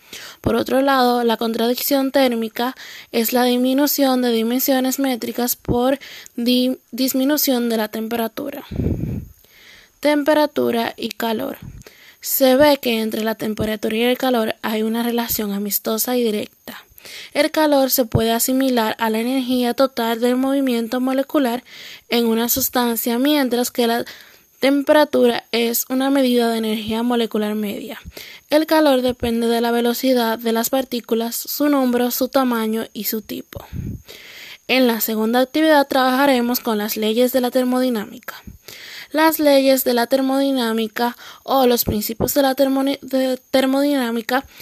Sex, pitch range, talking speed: female, 230-270 Hz, 135 wpm